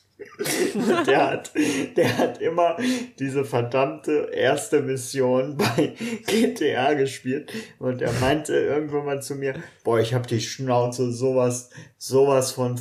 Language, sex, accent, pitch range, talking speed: German, male, German, 125-160 Hz, 130 wpm